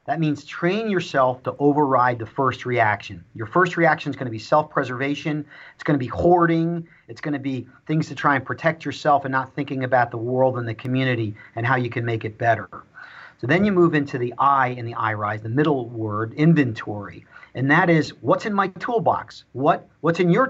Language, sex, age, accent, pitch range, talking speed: English, male, 40-59, American, 125-155 Hz, 215 wpm